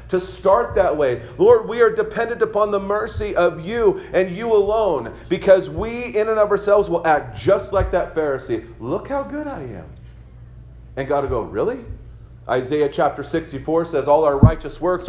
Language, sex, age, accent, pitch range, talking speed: English, male, 40-59, American, 150-210 Hz, 185 wpm